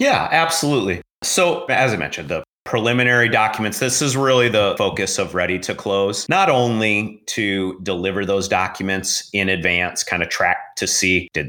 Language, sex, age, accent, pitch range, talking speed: English, male, 30-49, American, 90-110 Hz, 165 wpm